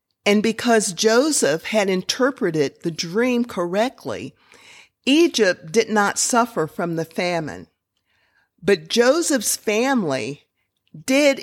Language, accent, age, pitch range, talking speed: English, American, 50-69, 160-215 Hz, 100 wpm